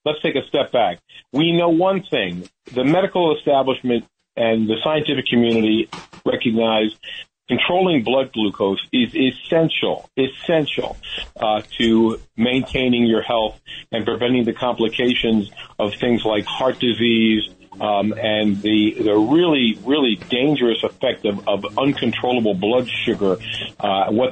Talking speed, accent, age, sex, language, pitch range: 130 wpm, American, 50-69, male, English, 110-130 Hz